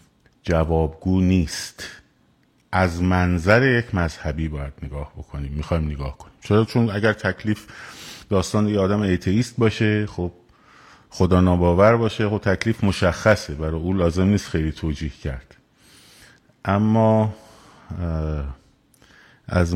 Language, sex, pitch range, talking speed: Persian, male, 90-115 Hz, 110 wpm